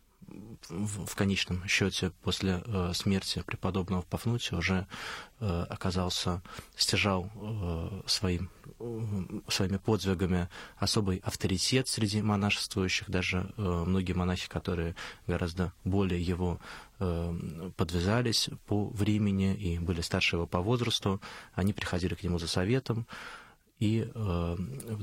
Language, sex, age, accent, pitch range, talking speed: Russian, male, 20-39, native, 90-110 Hz, 100 wpm